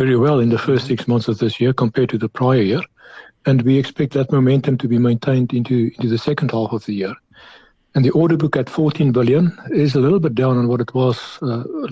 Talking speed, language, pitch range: 240 wpm, English, 115-135 Hz